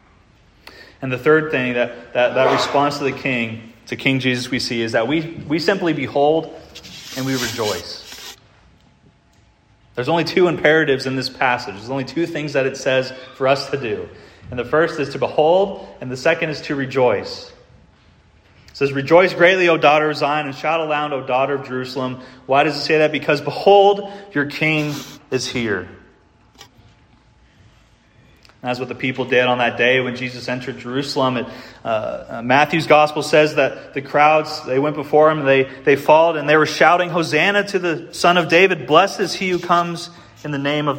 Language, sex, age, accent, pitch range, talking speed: English, male, 30-49, American, 125-155 Hz, 185 wpm